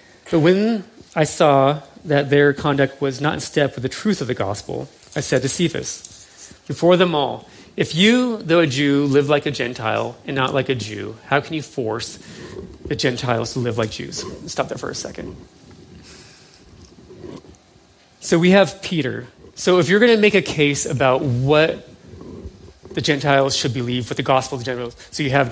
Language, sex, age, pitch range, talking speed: English, male, 30-49, 130-170 Hz, 190 wpm